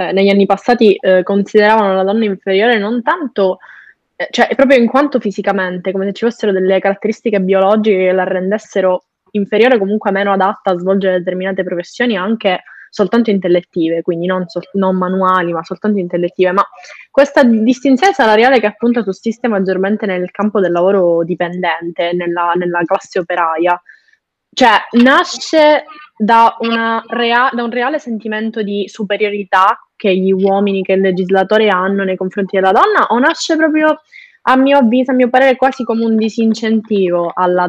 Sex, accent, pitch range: female, native, 185-225 Hz